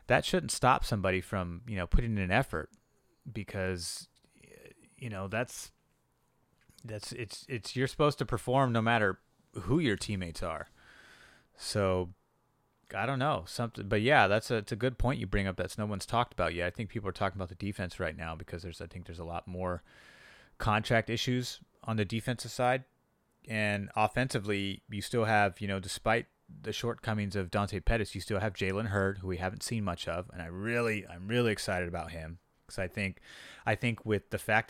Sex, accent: male, American